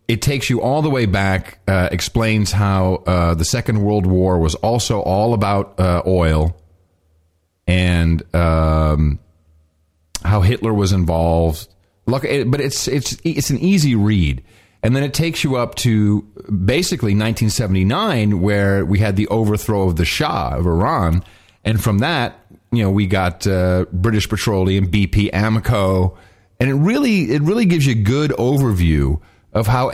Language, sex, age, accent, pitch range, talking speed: English, male, 40-59, American, 95-125 Hz, 160 wpm